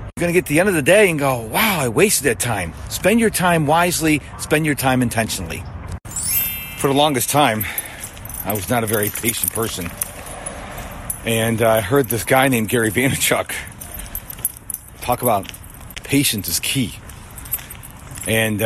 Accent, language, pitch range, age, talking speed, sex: American, English, 95-130 Hz, 40-59, 160 wpm, male